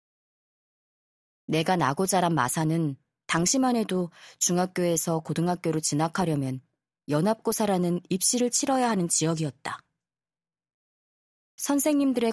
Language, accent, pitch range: Korean, native, 155-220 Hz